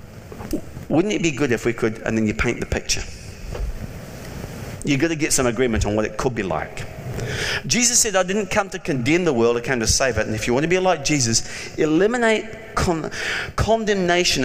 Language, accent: English, British